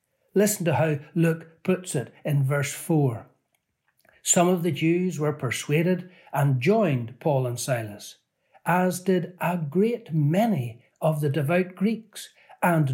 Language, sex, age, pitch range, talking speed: English, male, 60-79, 140-185 Hz, 140 wpm